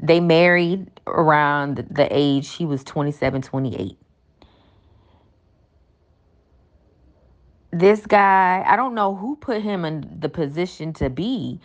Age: 20-39